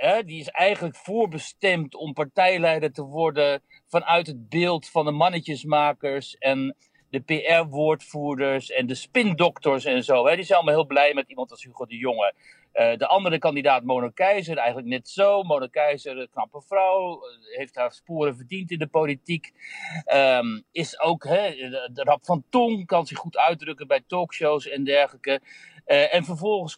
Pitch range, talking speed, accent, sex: 135-175 Hz, 165 wpm, Dutch, male